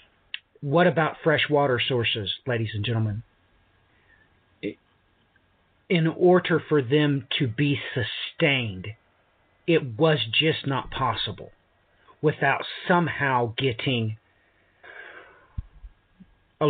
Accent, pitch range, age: American, 105-150 Hz, 50-69